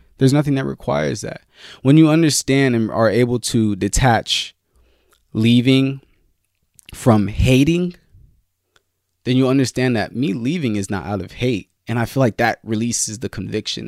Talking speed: 150 wpm